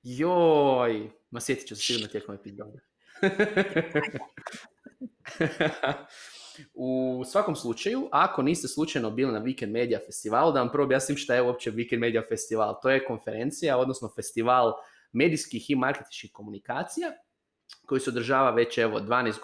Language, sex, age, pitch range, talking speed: Croatian, male, 20-39, 115-150 Hz, 140 wpm